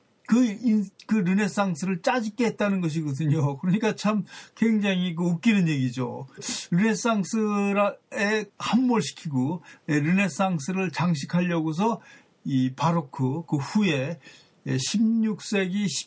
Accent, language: native, Korean